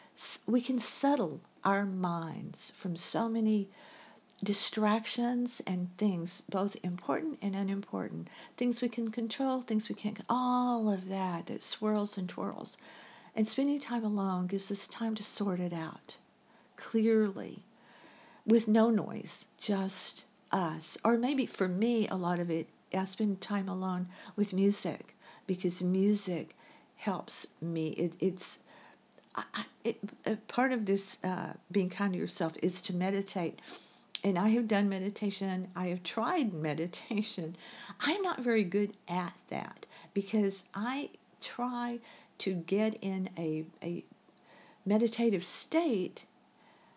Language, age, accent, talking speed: English, 50-69, American, 135 wpm